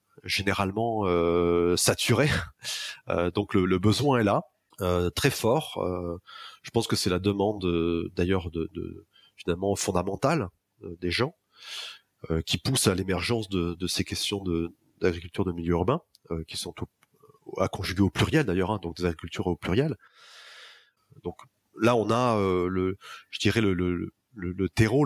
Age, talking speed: 30-49, 170 wpm